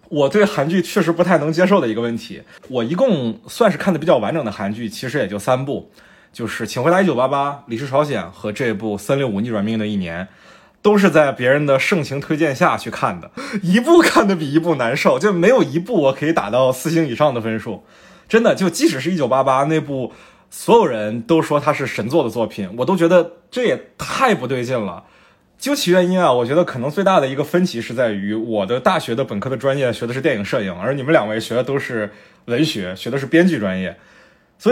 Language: Chinese